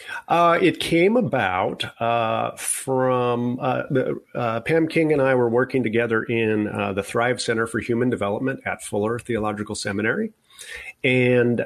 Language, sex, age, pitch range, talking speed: English, male, 40-59, 105-120 Hz, 145 wpm